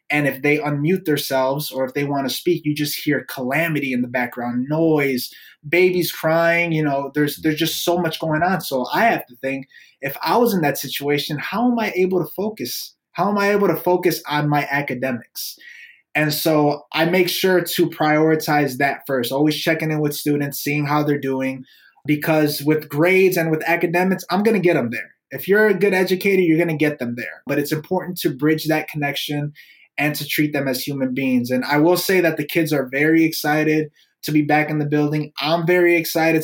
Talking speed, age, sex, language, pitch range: 215 wpm, 20-39, male, English, 145-170 Hz